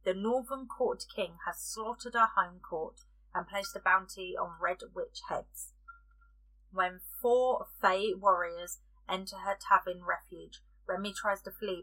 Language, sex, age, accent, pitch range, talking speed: English, female, 30-49, British, 175-215 Hz, 145 wpm